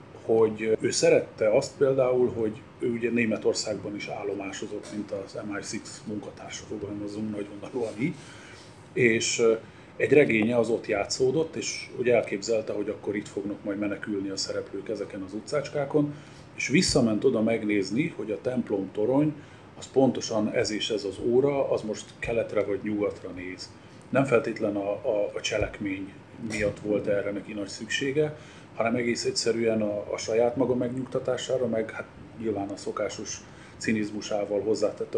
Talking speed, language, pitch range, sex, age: 145 wpm, Hungarian, 105-160 Hz, male, 30-49